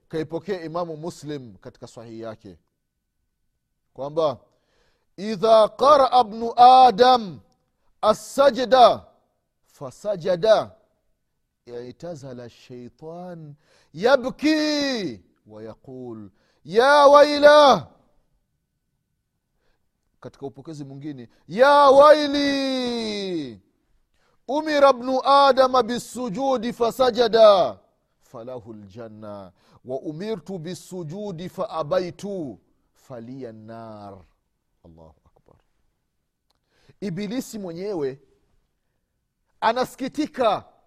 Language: Swahili